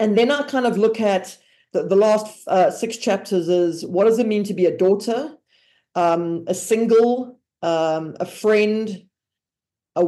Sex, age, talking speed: female, 40-59, 175 wpm